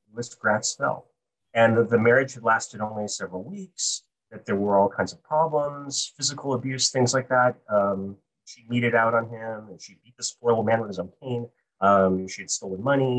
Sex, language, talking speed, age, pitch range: male, English, 205 wpm, 30-49, 100-120 Hz